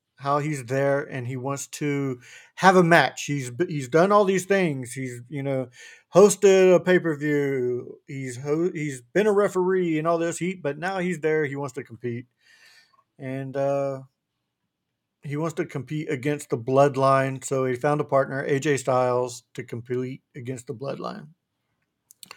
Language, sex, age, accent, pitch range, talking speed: English, male, 50-69, American, 135-180 Hz, 170 wpm